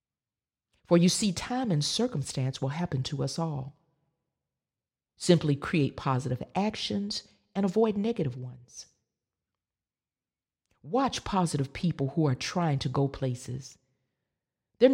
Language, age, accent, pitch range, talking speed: English, 40-59, American, 135-185 Hz, 115 wpm